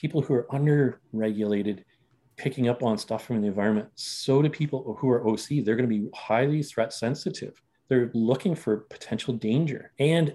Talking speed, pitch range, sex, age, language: 180 wpm, 110-140 Hz, male, 40-59, English